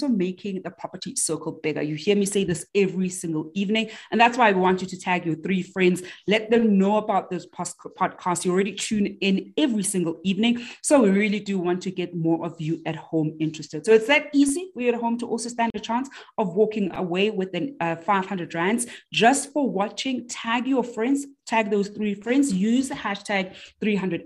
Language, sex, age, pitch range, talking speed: English, female, 30-49, 175-225 Hz, 205 wpm